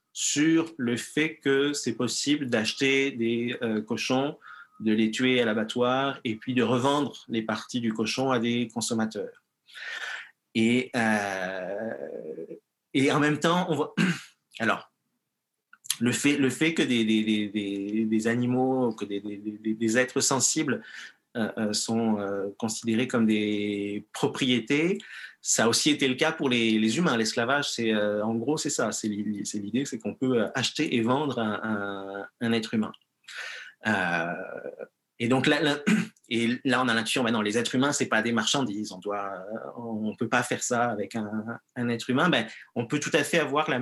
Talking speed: 180 wpm